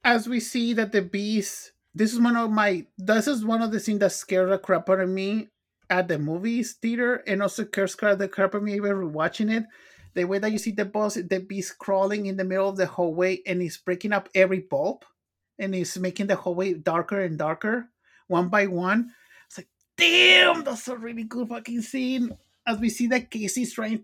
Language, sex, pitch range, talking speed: English, male, 185-215 Hz, 220 wpm